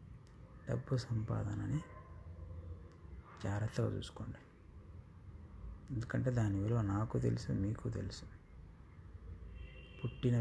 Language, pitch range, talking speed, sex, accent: Telugu, 85-110 Hz, 75 wpm, male, native